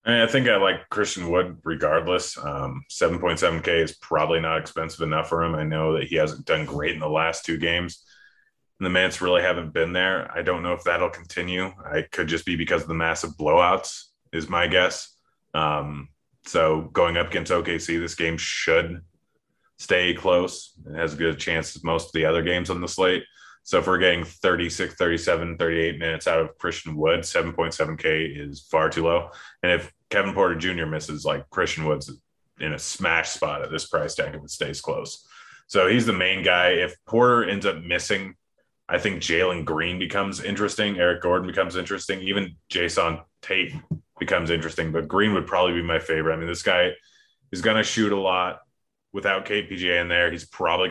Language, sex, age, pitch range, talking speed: English, male, 30-49, 80-90 Hz, 195 wpm